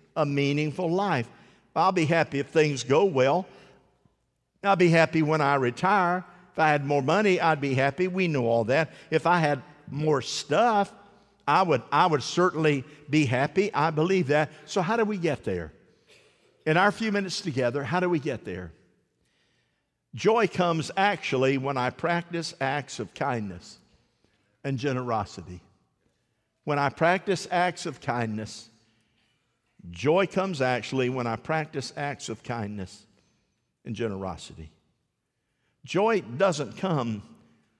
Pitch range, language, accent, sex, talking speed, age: 115-165 Hz, English, American, male, 140 wpm, 50-69